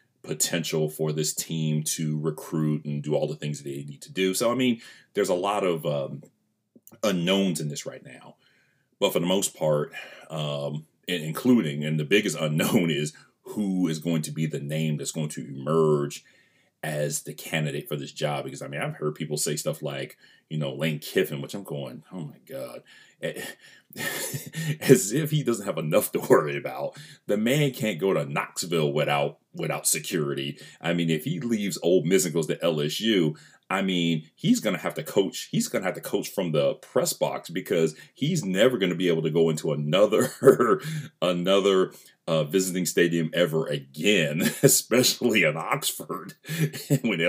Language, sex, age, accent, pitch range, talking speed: English, male, 30-49, American, 75-95 Hz, 185 wpm